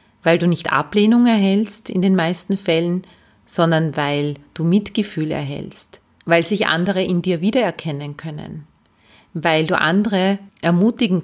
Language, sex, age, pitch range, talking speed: German, female, 30-49, 155-190 Hz, 135 wpm